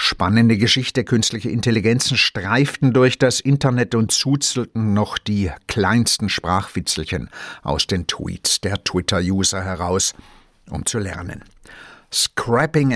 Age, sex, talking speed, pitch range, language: 60-79, male, 110 wpm, 95-125 Hz, German